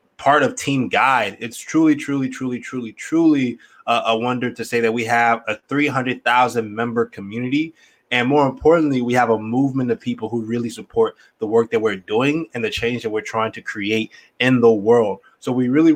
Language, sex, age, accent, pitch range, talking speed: English, male, 20-39, American, 115-140 Hz, 195 wpm